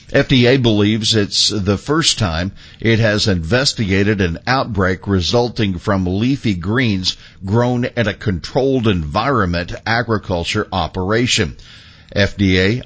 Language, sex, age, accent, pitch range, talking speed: English, male, 60-79, American, 95-120 Hz, 105 wpm